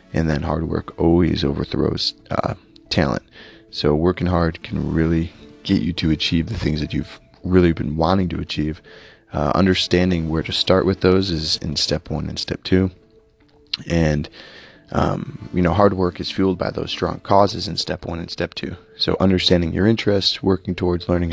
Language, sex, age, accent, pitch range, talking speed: English, male, 30-49, American, 80-95 Hz, 185 wpm